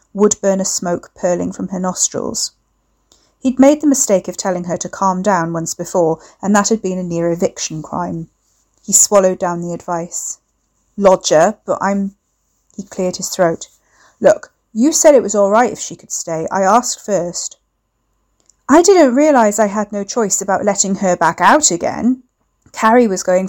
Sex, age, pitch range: female, 40-59, 175-215 Hz